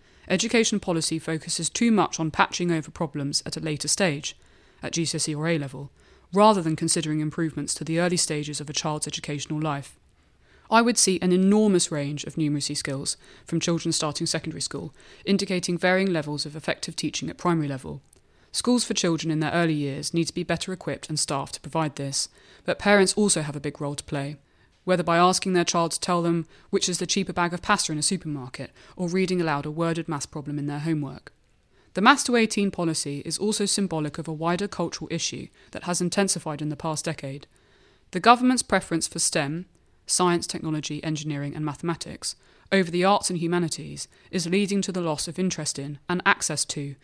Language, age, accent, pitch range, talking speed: English, 20-39, British, 150-185 Hz, 195 wpm